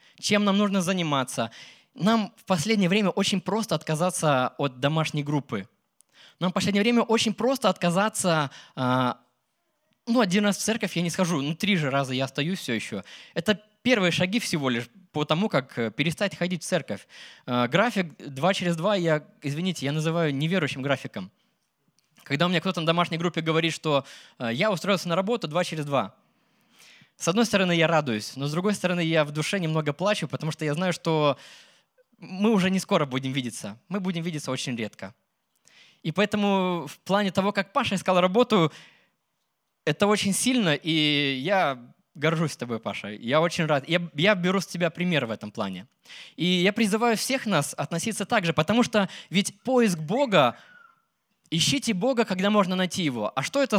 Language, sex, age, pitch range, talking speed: Russian, male, 20-39, 150-205 Hz, 175 wpm